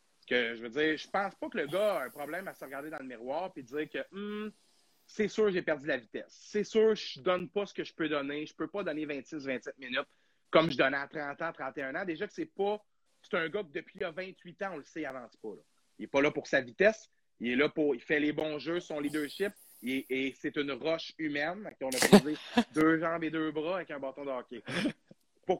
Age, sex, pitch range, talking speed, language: 30-49, male, 145-190 Hz, 265 wpm, French